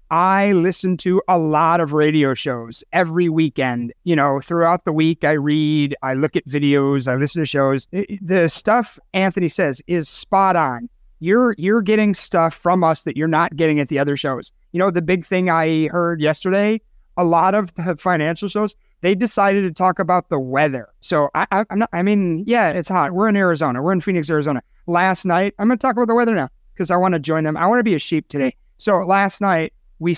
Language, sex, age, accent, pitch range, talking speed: English, male, 30-49, American, 155-195 Hz, 220 wpm